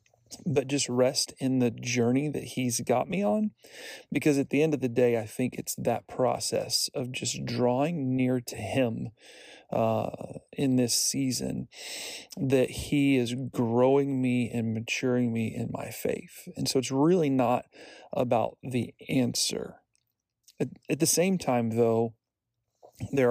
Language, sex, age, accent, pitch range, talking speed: English, male, 40-59, American, 115-135 Hz, 150 wpm